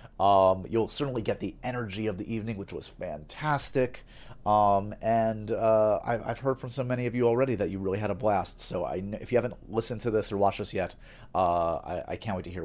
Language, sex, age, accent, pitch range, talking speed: English, male, 30-49, American, 100-150 Hz, 230 wpm